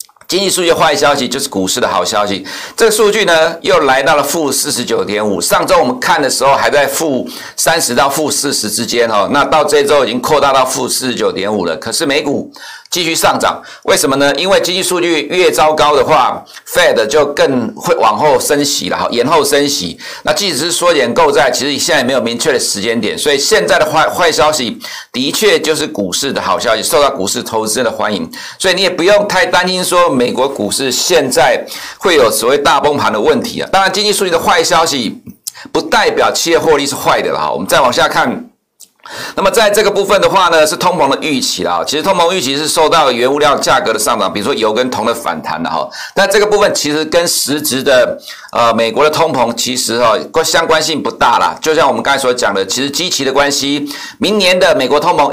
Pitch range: 140-200 Hz